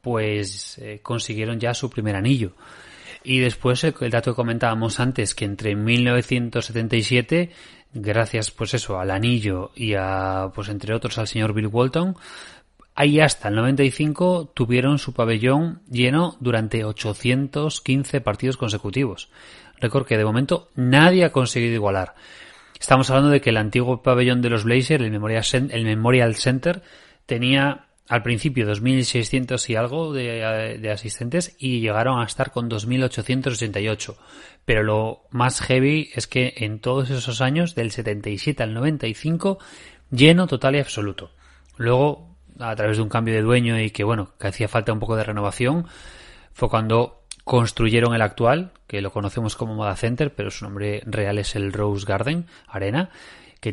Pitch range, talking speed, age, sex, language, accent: 110-130 Hz, 155 wpm, 30-49, male, Spanish, Spanish